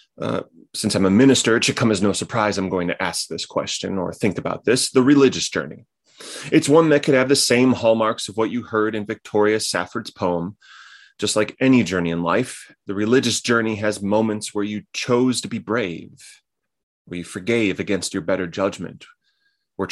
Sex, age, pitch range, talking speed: male, 30-49, 95-120 Hz, 195 wpm